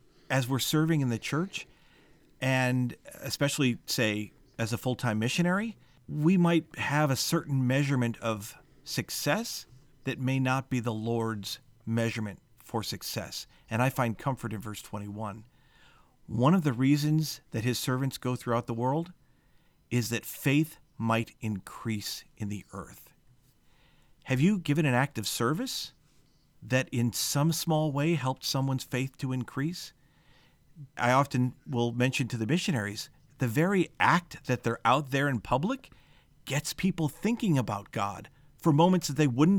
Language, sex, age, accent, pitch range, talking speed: English, male, 50-69, American, 120-155 Hz, 150 wpm